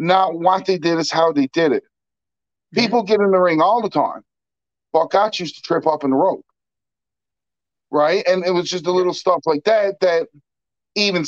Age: 50-69